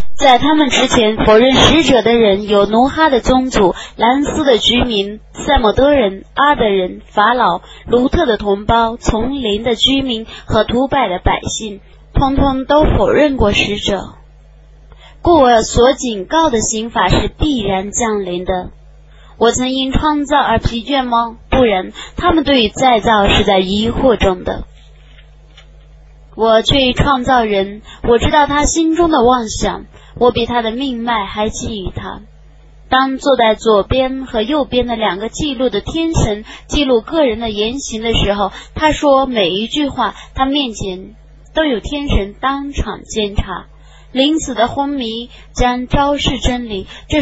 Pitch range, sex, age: 215-270 Hz, female, 20-39